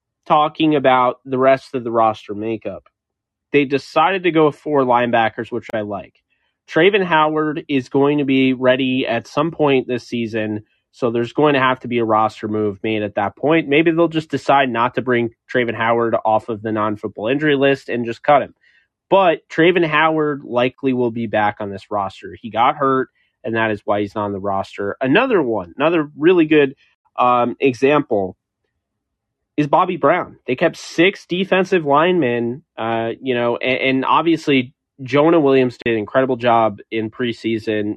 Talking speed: 175 wpm